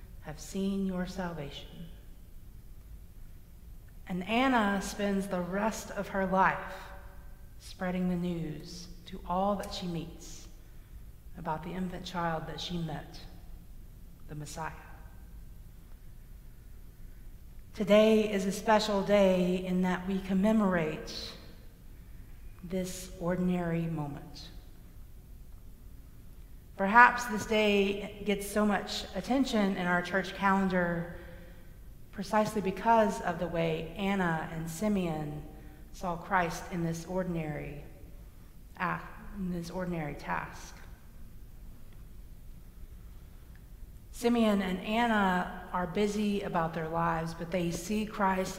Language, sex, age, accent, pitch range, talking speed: English, female, 50-69, American, 165-200 Hz, 100 wpm